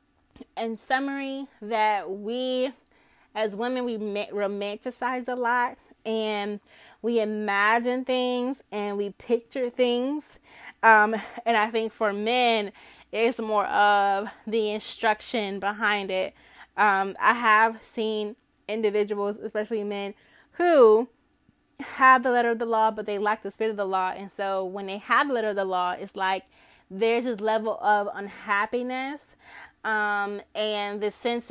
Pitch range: 205-235 Hz